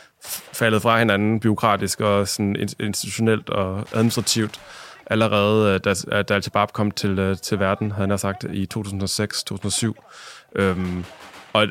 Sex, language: male, Danish